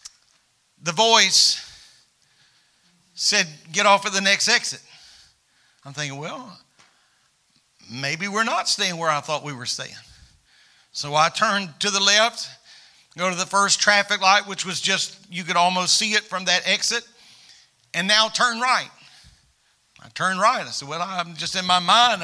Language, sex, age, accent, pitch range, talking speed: English, male, 50-69, American, 180-235 Hz, 160 wpm